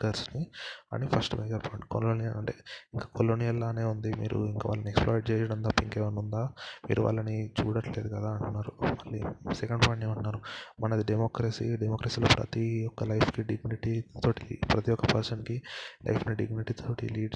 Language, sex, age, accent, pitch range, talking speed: Telugu, male, 20-39, native, 110-120 Hz, 140 wpm